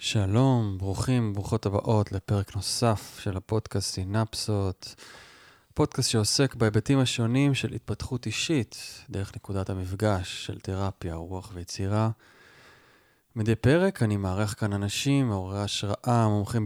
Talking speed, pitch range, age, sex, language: 115 wpm, 95-110 Hz, 20-39, male, Hebrew